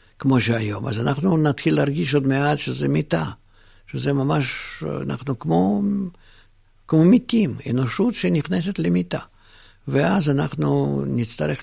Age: 60-79